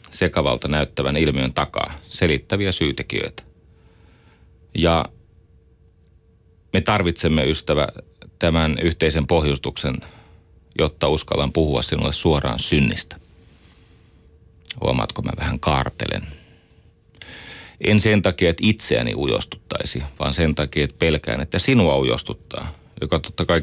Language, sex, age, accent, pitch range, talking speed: Finnish, male, 30-49, native, 75-100 Hz, 100 wpm